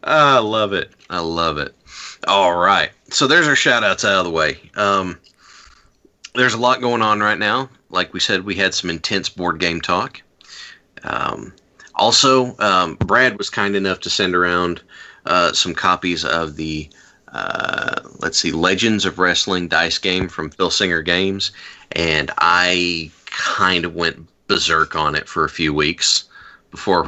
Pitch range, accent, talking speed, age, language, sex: 85-100 Hz, American, 165 wpm, 30-49, English, male